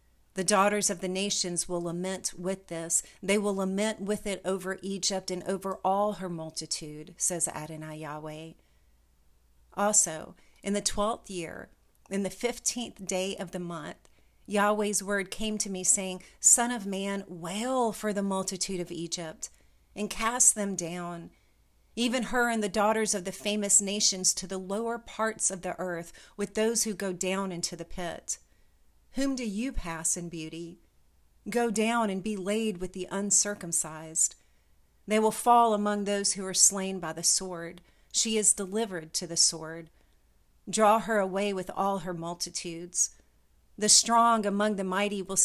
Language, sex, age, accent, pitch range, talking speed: English, female, 40-59, American, 170-205 Hz, 160 wpm